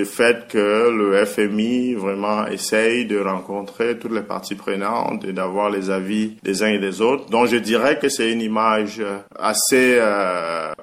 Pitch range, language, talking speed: 105-120 Hz, French, 165 wpm